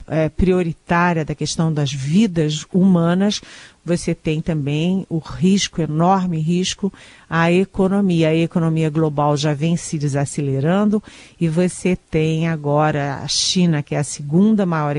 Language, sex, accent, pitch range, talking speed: Portuguese, female, Brazilian, 155-180 Hz, 130 wpm